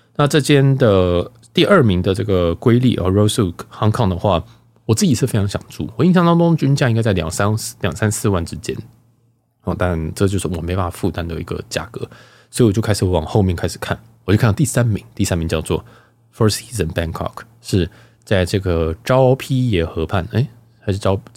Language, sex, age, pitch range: Chinese, male, 20-39, 95-120 Hz